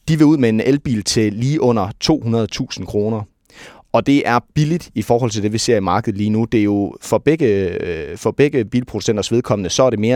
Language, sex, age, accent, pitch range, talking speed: Danish, male, 30-49, native, 105-130 Hz, 230 wpm